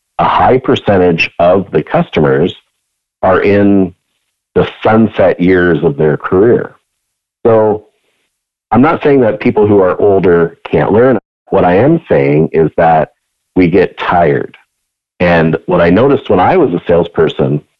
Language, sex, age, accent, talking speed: English, male, 50-69, American, 145 wpm